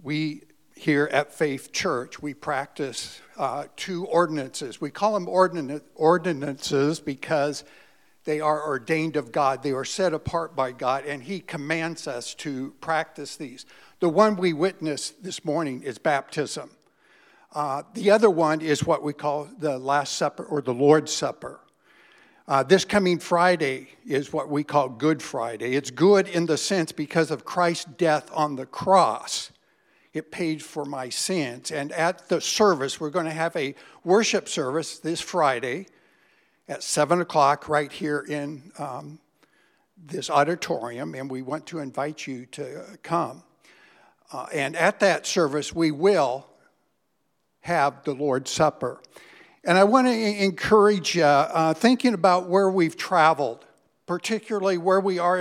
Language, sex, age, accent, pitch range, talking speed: English, male, 60-79, American, 145-185 Hz, 150 wpm